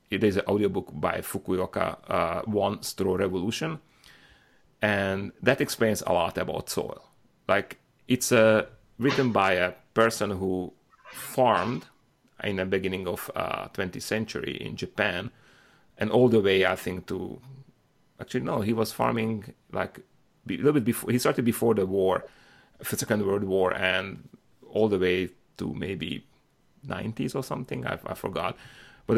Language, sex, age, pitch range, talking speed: English, male, 30-49, 100-120 Hz, 150 wpm